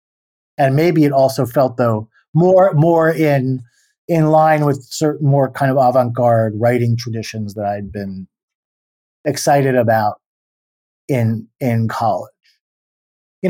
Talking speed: 125 wpm